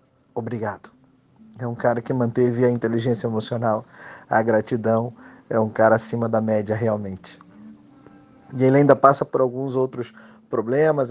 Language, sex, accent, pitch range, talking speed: Portuguese, male, Brazilian, 115-140 Hz, 140 wpm